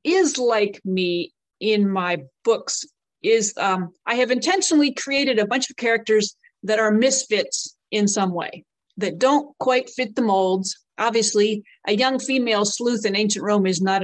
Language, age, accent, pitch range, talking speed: English, 40-59, American, 200-255 Hz, 160 wpm